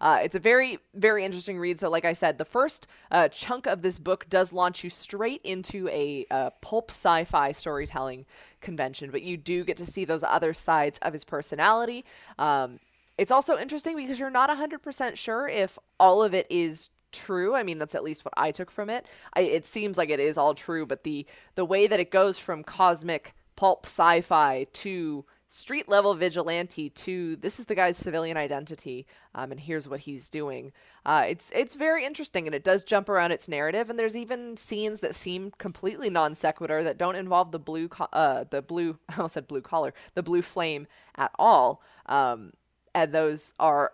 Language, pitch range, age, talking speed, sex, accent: English, 155-195 Hz, 20-39, 200 wpm, female, American